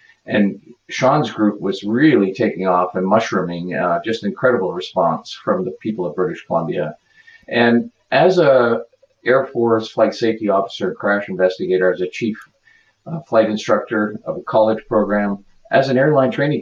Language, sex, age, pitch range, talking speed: English, male, 50-69, 100-130 Hz, 155 wpm